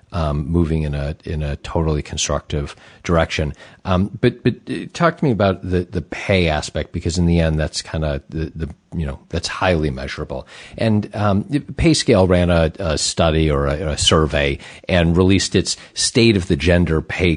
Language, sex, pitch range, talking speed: English, male, 80-100 Hz, 185 wpm